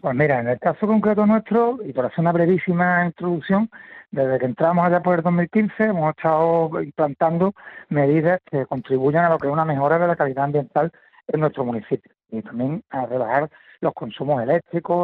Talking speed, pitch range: 185 wpm, 140-190 Hz